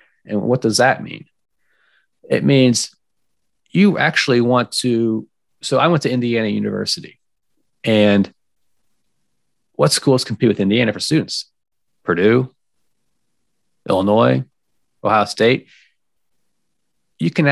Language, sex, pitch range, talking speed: English, male, 105-140 Hz, 105 wpm